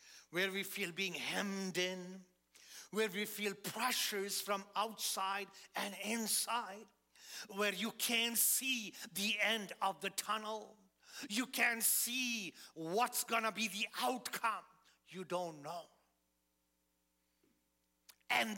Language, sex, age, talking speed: English, male, 50-69, 115 wpm